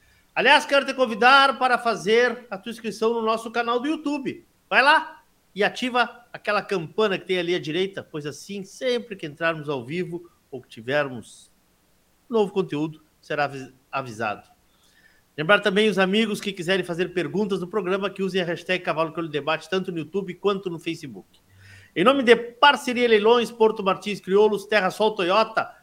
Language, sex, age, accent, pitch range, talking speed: Portuguese, male, 50-69, Brazilian, 165-220 Hz, 165 wpm